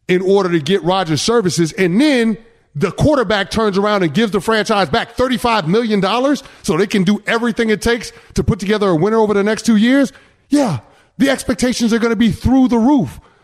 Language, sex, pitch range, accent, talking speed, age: English, male, 180-235 Hz, American, 205 wpm, 30-49